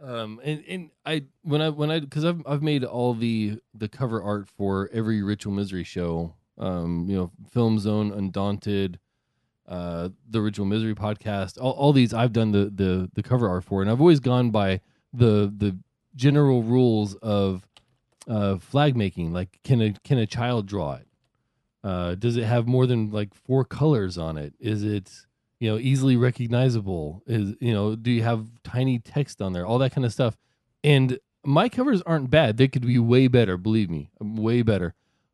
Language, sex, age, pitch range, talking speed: English, male, 20-39, 100-135 Hz, 190 wpm